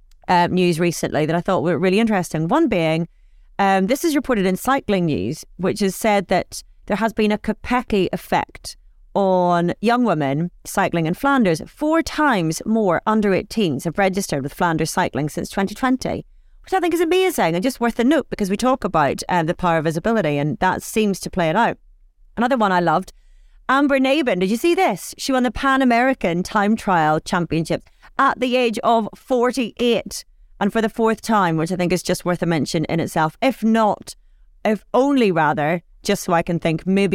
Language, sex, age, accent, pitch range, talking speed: English, female, 40-59, British, 170-230 Hz, 195 wpm